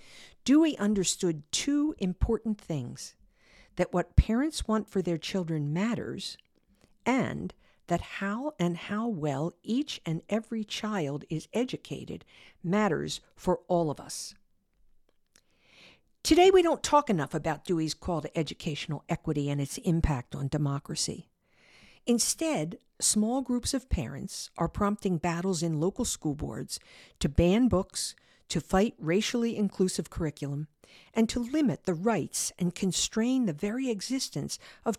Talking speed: 130 wpm